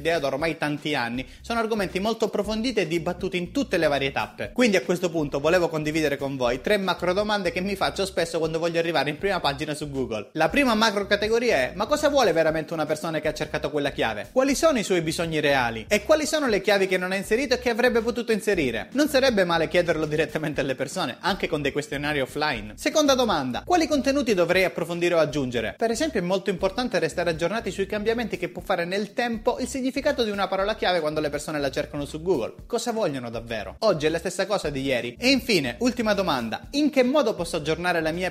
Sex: male